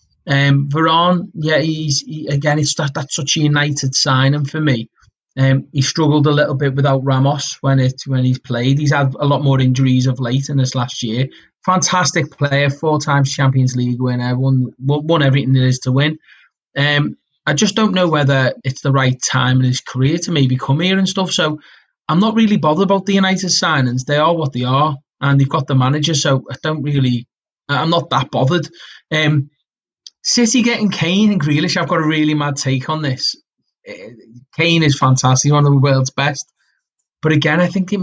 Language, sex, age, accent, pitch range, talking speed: English, male, 20-39, British, 135-155 Hz, 200 wpm